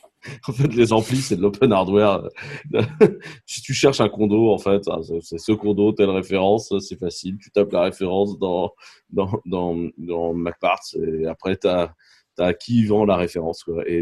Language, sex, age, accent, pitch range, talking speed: French, male, 20-39, French, 85-105 Hz, 175 wpm